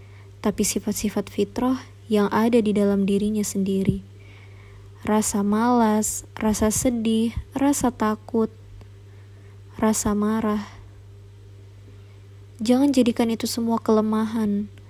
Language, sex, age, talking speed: Indonesian, male, 20-39, 90 wpm